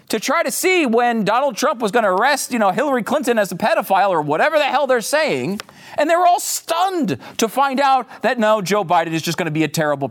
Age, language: 40-59, English